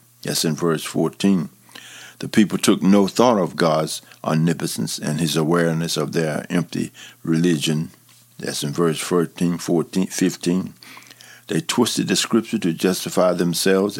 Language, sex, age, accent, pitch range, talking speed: English, male, 50-69, American, 85-105 Hz, 140 wpm